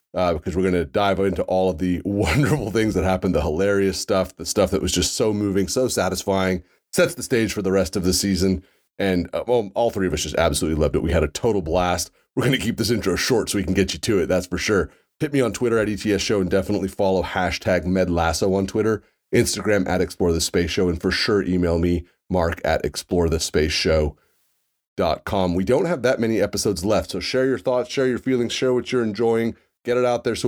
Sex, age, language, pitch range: male, 30-49, English, 85-100 Hz